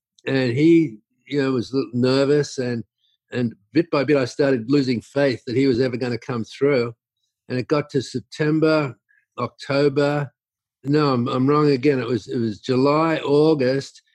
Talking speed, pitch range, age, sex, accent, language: 180 wpm, 125-150 Hz, 50-69, male, Australian, English